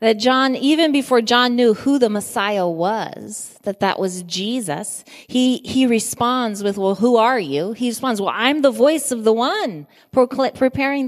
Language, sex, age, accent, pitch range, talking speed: English, female, 30-49, American, 180-245 Hz, 175 wpm